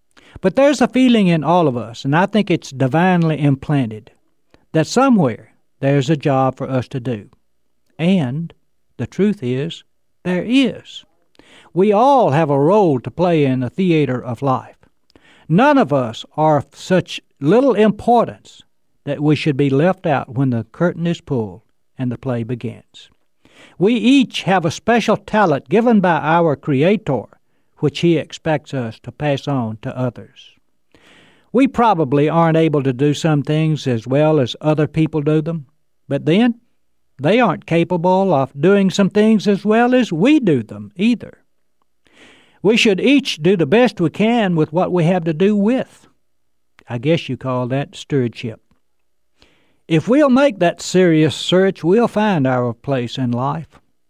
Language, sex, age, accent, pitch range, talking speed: English, male, 60-79, American, 135-190 Hz, 165 wpm